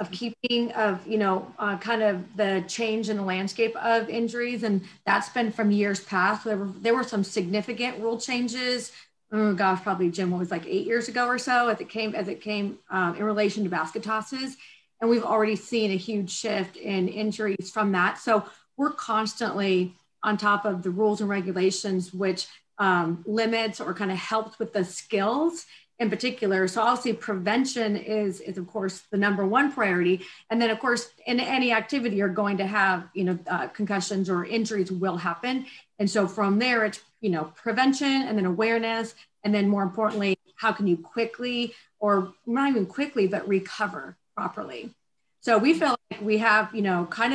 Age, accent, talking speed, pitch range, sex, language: 30-49, American, 190 wpm, 195-230 Hz, female, English